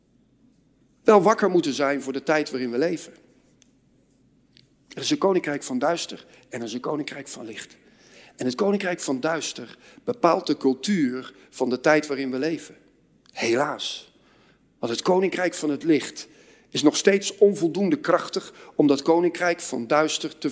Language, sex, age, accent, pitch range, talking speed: Dutch, male, 50-69, Dutch, 150-195 Hz, 160 wpm